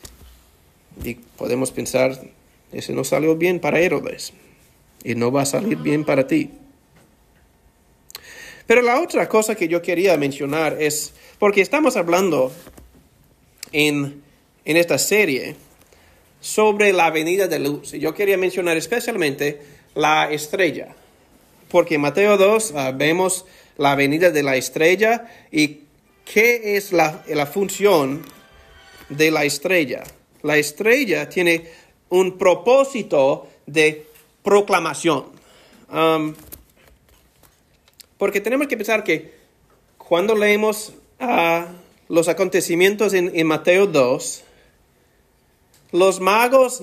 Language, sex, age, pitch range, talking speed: Spanish, male, 40-59, 145-200 Hz, 115 wpm